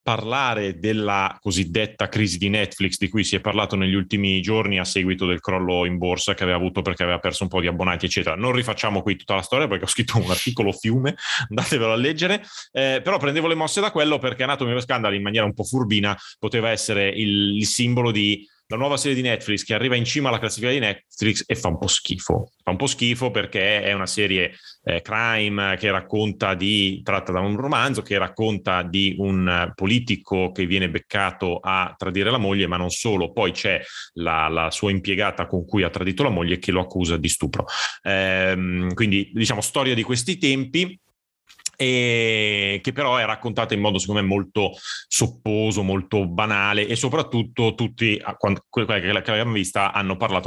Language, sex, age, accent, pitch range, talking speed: Italian, male, 30-49, native, 95-120 Hz, 195 wpm